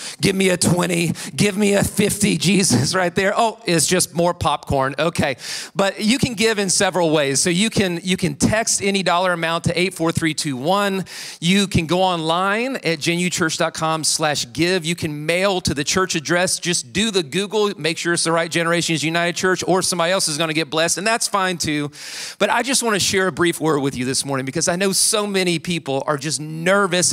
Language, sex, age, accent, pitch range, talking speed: English, male, 40-59, American, 160-195 Hz, 210 wpm